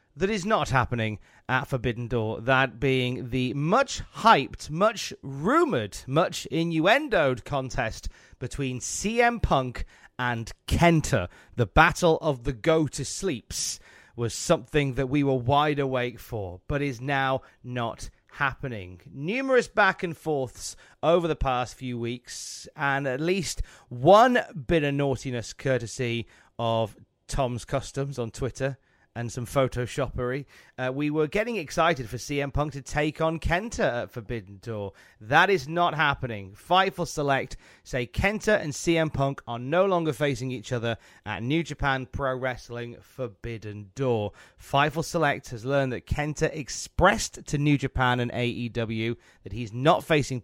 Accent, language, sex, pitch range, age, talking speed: British, English, male, 120-150 Hz, 30-49, 135 wpm